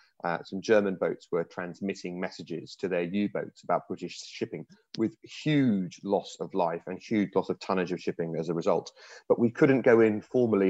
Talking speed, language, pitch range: 190 wpm, English, 95-110 Hz